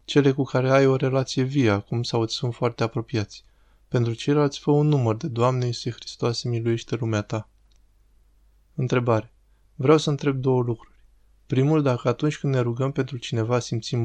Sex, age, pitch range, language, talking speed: male, 20-39, 115-135 Hz, Romanian, 170 wpm